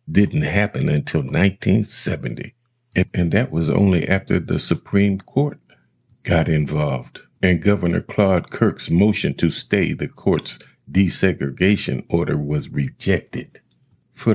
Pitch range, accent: 75-95 Hz, American